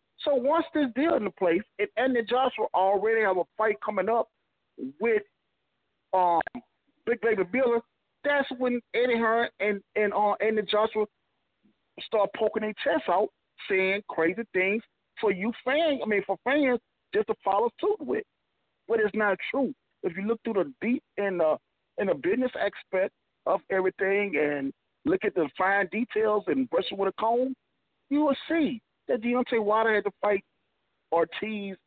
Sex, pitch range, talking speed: male, 200-260 Hz, 175 wpm